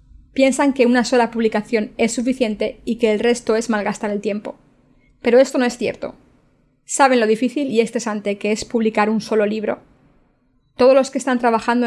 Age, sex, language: 20-39, female, Spanish